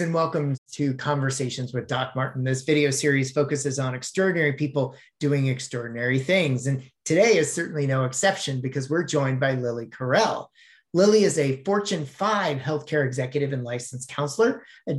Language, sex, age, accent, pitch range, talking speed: English, male, 30-49, American, 135-170 Hz, 160 wpm